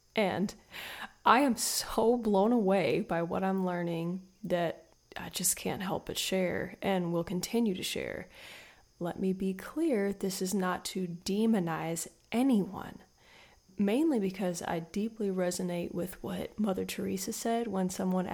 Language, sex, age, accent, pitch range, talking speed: English, female, 20-39, American, 180-205 Hz, 145 wpm